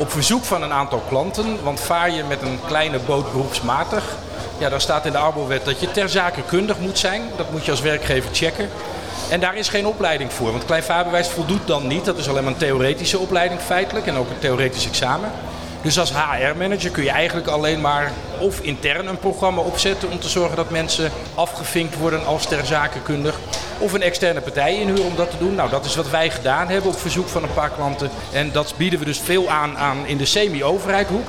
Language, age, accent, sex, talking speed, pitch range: Dutch, 50-69, Dutch, male, 215 wpm, 140-175 Hz